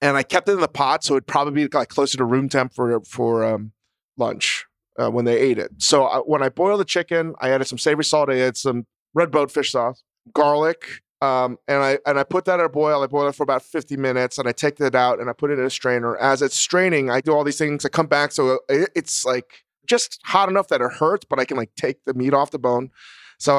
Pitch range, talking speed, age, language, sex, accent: 125-150 Hz, 270 wpm, 30-49, English, male, American